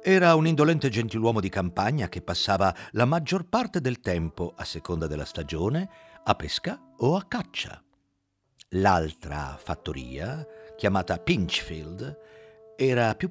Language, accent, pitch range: Italian, native, 90-150 Hz